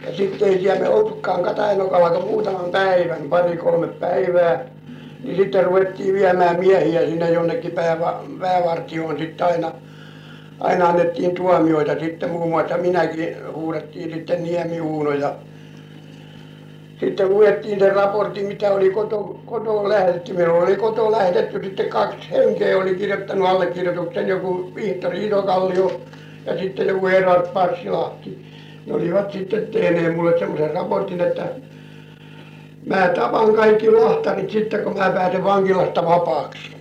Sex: male